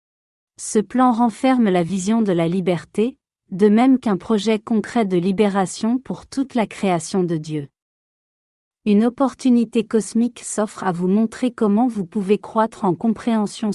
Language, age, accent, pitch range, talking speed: French, 50-69, French, 185-230 Hz, 150 wpm